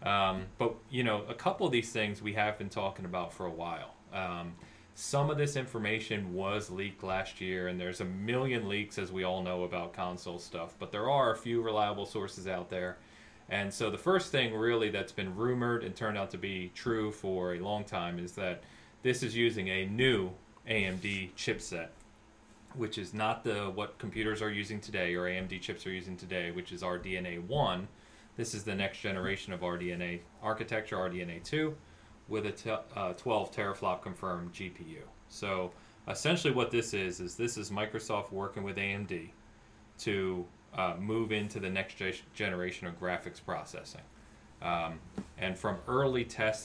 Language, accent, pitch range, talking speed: English, American, 90-110 Hz, 180 wpm